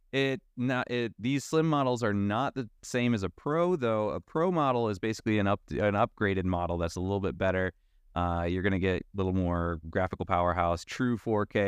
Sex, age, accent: male, 20-39, American